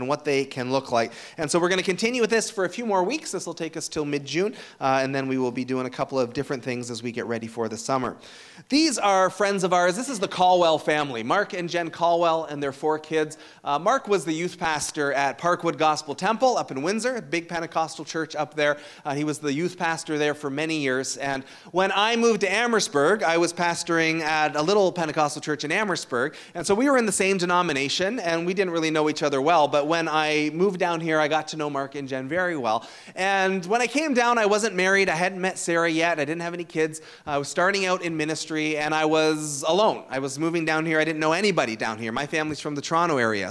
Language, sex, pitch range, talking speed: English, male, 150-185 Hz, 250 wpm